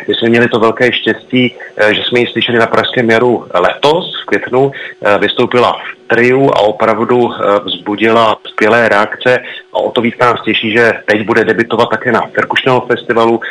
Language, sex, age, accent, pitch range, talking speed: Czech, male, 40-59, native, 105-120 Hz, 170 wpm